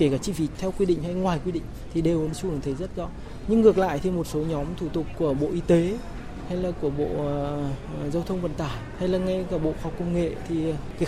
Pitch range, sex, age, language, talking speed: 155-200 Hz, male, 20-39, Vietnamese, 265 wpm